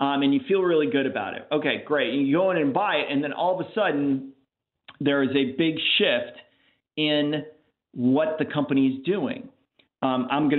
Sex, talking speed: male, 210 wpm